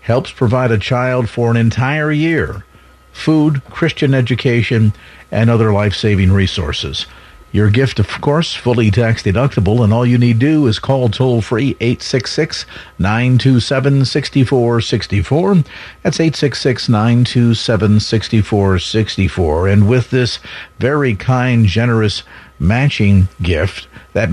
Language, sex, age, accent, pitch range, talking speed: English, male, 50-69, American, 100-125 Hz, 105 wpm